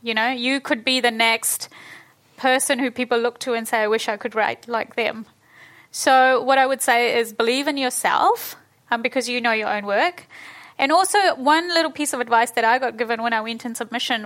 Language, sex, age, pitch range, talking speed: English, female, 10-29, 230-285 Hz, 225 wpm